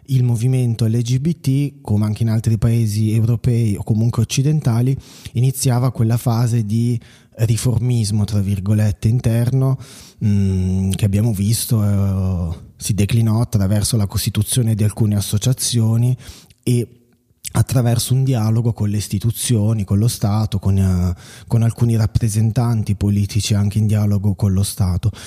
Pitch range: 105-130 Hz